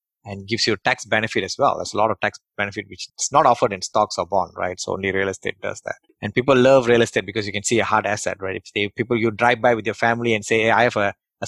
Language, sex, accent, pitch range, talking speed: English, male, Indian, 105-125 Hz, 280 wpm